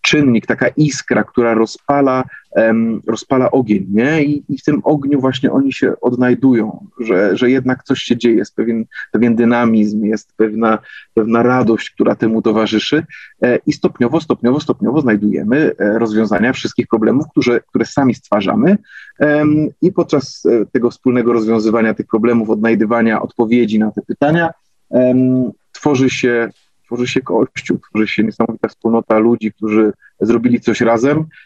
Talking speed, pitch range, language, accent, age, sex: 135 wpm, 110-130 Hz, Polish, native, 30-49, male